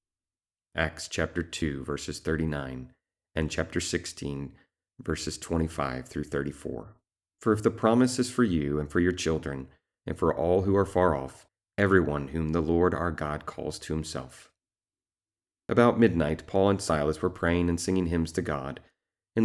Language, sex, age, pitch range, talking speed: English, male, 40-59, 80-95 Hz, 160 wpm